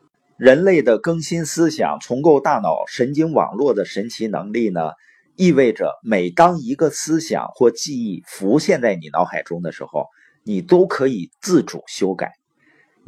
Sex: male